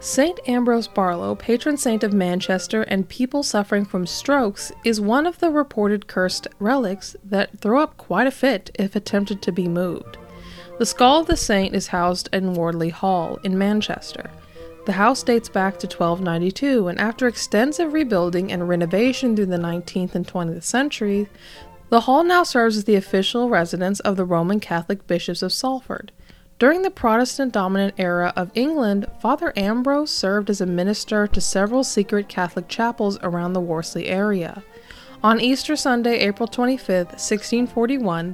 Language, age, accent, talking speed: English, 20-39, American, 160 wpm